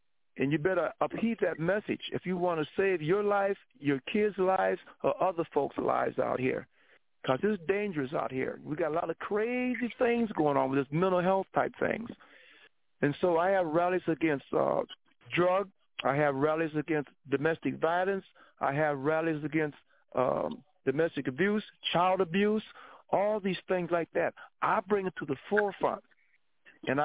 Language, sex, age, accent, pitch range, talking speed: English, male, 60-79, American, 150-190 Hz, 170 wpm